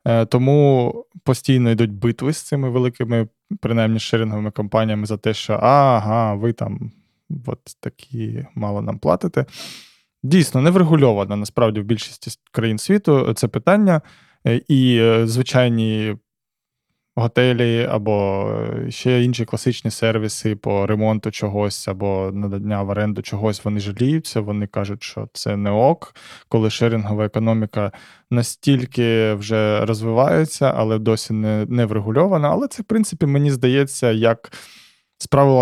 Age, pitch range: 20-39, 105-130 Hz